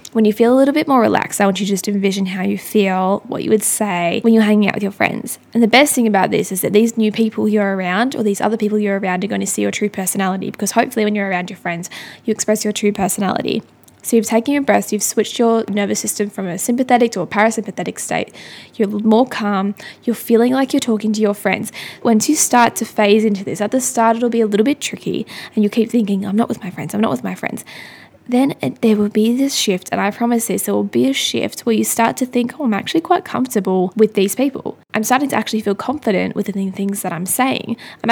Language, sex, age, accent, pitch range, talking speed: English, female, 10-29, Australian, 200-230 Hz, 260 wpm